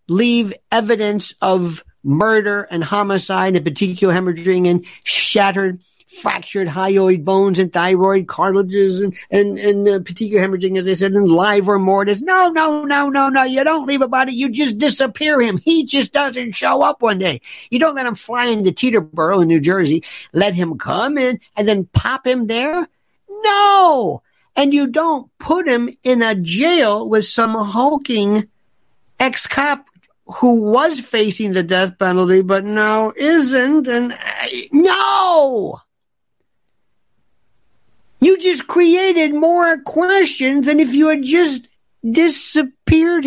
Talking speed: 145 wpm